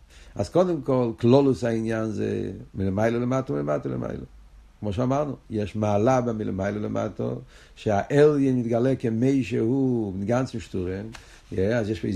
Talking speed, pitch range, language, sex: 130 wpm, 105-130 Hz, Hebrew, male